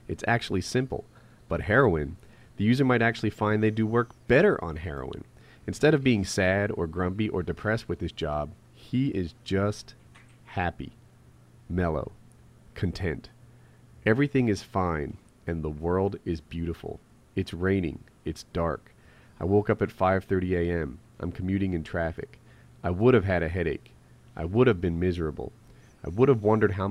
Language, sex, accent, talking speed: English, male, American, 160 wpm